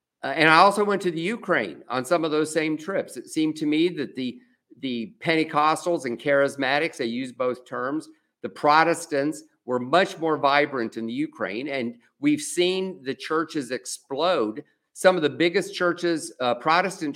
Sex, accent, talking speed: male, American, 170 wpm